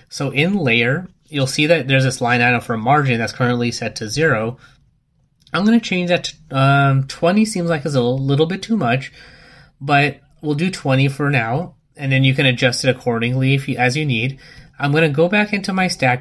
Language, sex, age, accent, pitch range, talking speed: English, male, 20-39, American, 120-145 Hz, 220 wpm